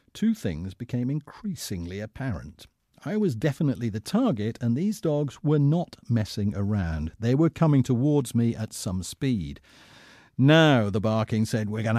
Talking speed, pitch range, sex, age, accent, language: 155 wpm, 110-145 Hz, male, 50-69, British, English